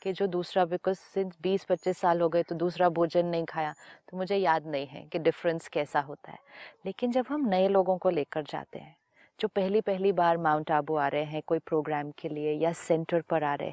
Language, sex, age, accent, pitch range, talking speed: Hindi, female, 30-49, native, 170-230 Hz, 225 wpm